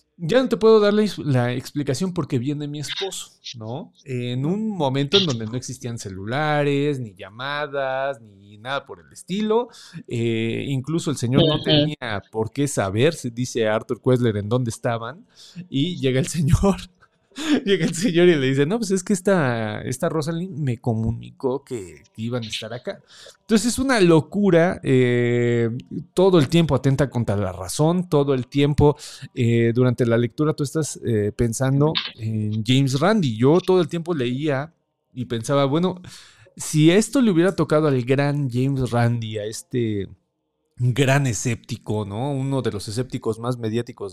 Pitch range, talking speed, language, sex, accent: 120-165 Hz, 165 wpm, Spanish, male, Mexican